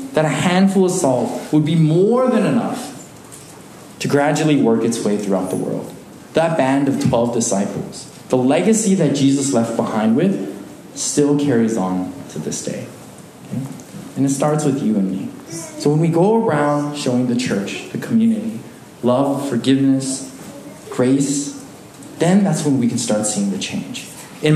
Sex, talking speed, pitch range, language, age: male, 160 wpm, 130-170 Hz, English, 20-39